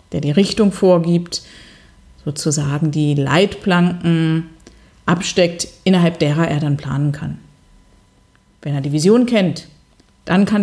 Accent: German